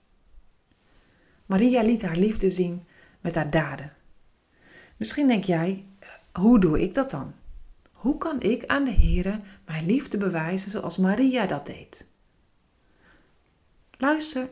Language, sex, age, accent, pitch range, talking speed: Dutch, female, 40-59, Dutch, 155-215 Hz, 125 wpm